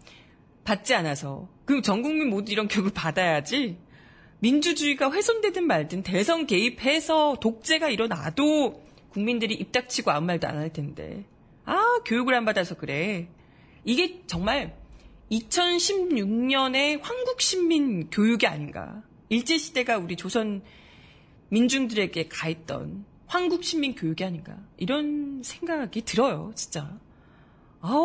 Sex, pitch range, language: female, 185-295 Hz, Korean